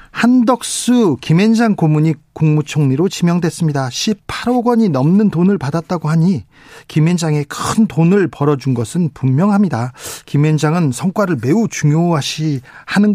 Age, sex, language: 40-59, male, Korean